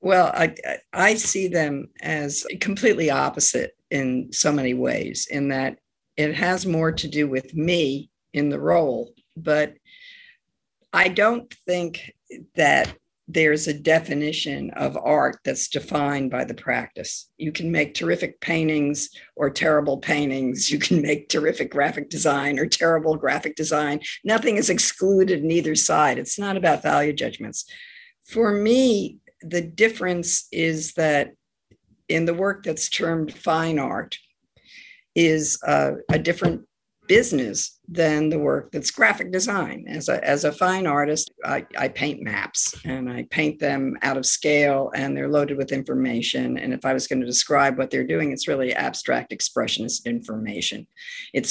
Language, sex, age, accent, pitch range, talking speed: English, female, 50-69, American, 145-185 Hz, 150 wpm